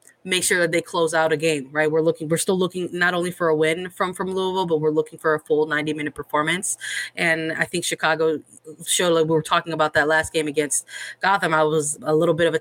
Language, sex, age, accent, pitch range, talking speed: English, female, 20-39, American, 155-180 Hz, 250 wpm